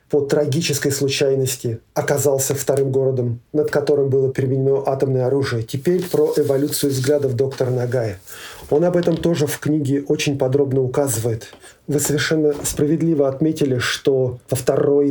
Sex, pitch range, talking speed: male, 135-150 Hz, 135 wpm